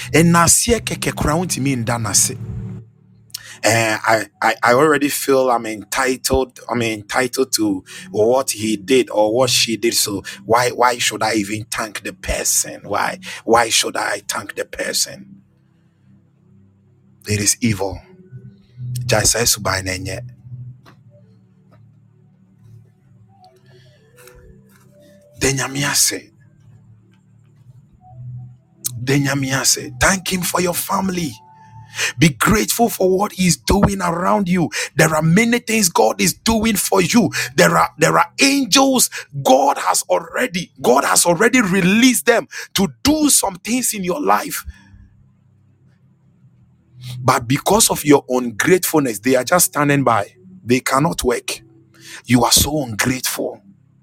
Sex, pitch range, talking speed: male, 115-180 Hz, 110 wpm